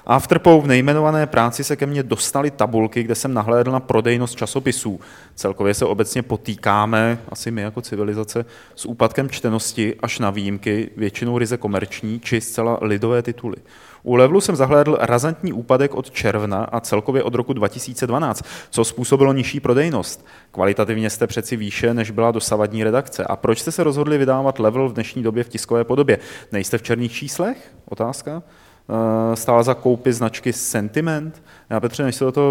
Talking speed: 170 wpm